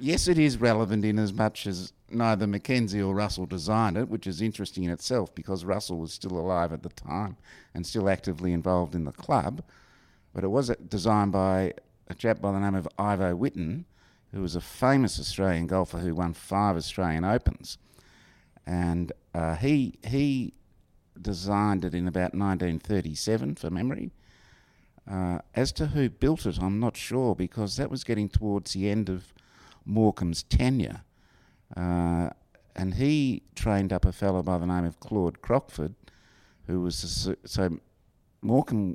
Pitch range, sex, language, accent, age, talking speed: 90-110 Hz, male, English, Australian, 50-69, 165 wpm